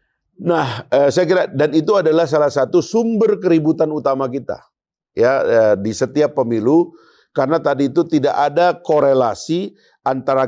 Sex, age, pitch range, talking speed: male, 50-69, 125-170 Hz, 145 wpm